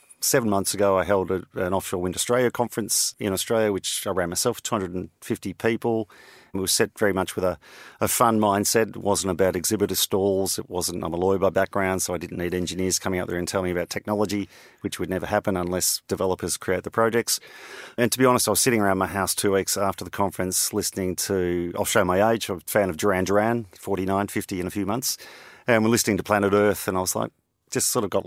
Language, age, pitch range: English, 40-59, 95-110 Hz